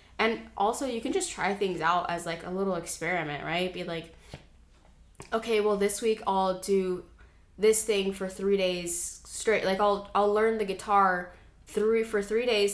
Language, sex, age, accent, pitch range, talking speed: English, female, 10-29, American, 170-210 Hz, 180 wpm